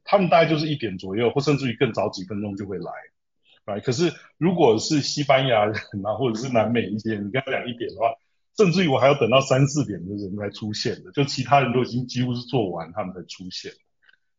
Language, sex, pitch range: Chinese, male, 110-150 Hz